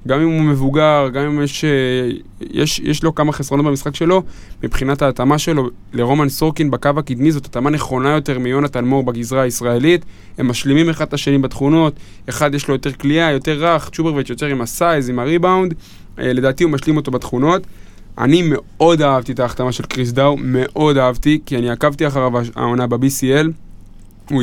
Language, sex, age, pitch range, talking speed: Hebrew, male, 20-39, 125-150 Hz, 170 wpm